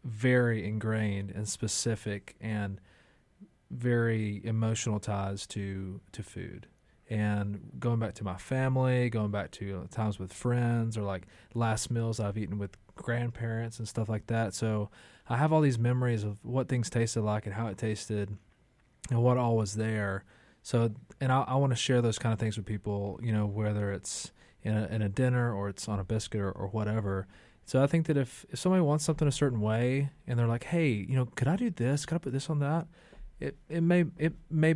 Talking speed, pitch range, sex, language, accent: 205 wpm, 105-130 Hz, male, English, American